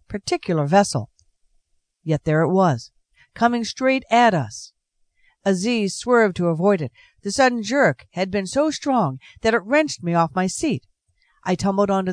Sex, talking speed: female, 160 wpm